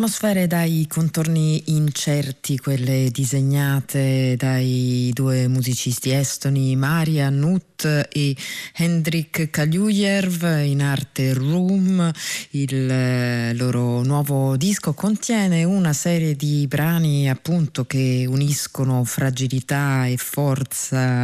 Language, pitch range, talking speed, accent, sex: Italian, 130-165 Hz, 95 wpm, native, female